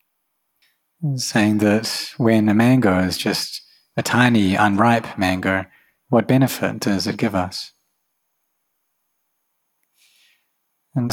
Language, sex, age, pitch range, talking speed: English, male, 30-49, 95-120 Hz, 95 wpm